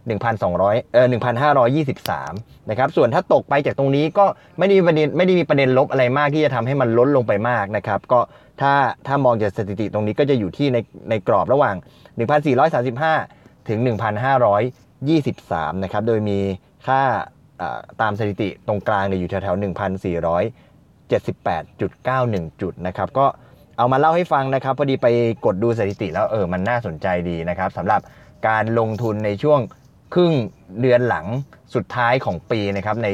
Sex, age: male, 20-39